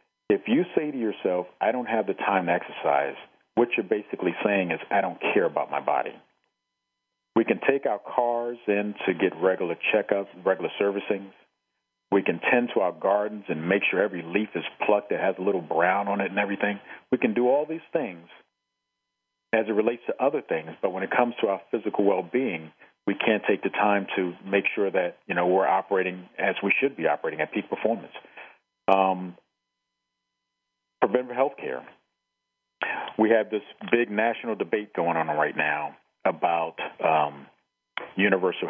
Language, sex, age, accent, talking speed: English, male, 40-59, American, 175 wpm